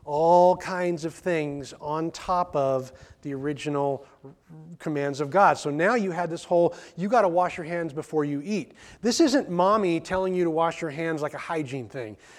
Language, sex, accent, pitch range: English, male, American, 150-190 Hz